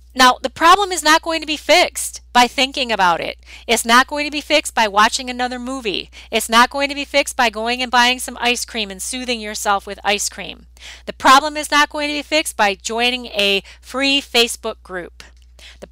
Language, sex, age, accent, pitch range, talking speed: English, female, 40-59, American, 190-275 Hz, 215 wpm